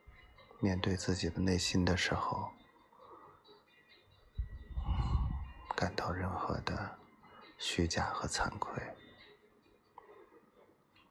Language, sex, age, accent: Chinese, male, 20-39, native